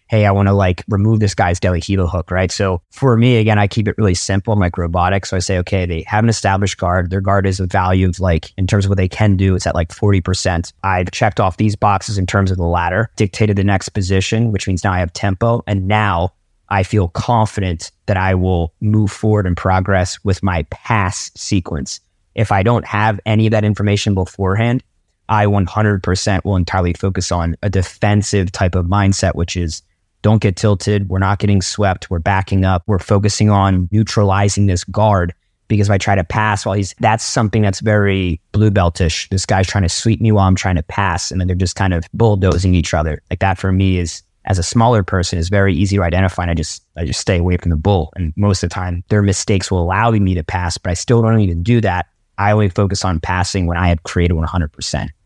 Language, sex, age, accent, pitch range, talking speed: English, male, 20-39, American, 90-105 Hz, 230 wpm